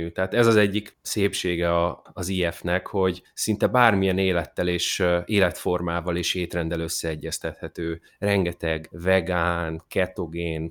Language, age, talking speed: Hungarian, 30-49, 105 wpm